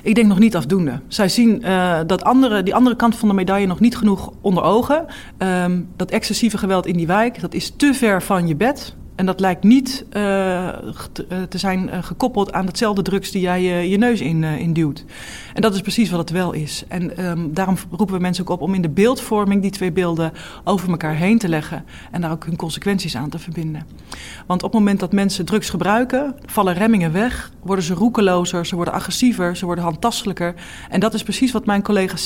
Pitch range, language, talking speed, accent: 170-205 Hz, Dutch, 220 wpm, Dutch